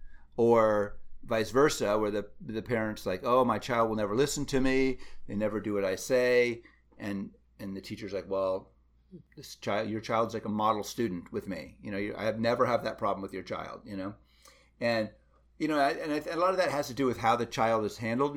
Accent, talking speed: American, 230 wpm